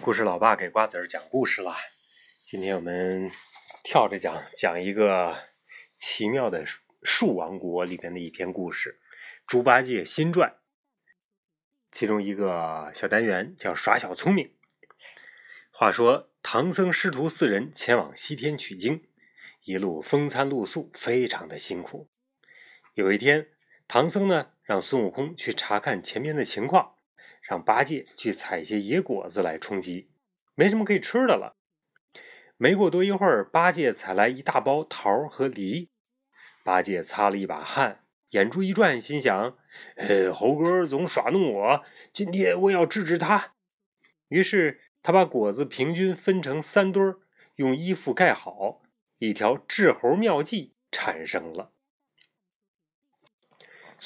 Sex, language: male, Chinese